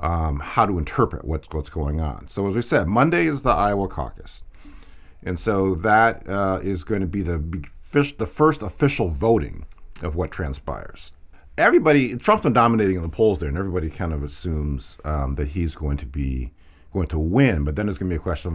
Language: English